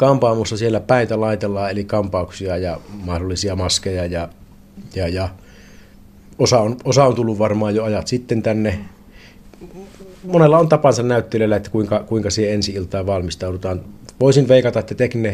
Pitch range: 95-110 Hz